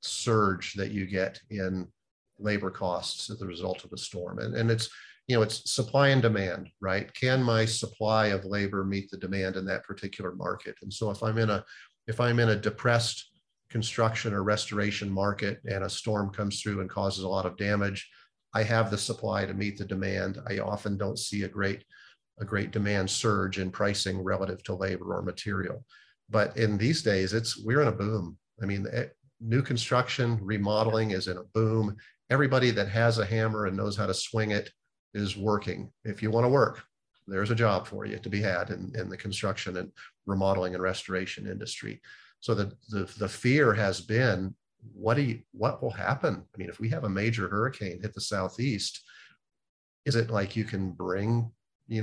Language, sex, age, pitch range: English, male, 40-59, 100-115 Hz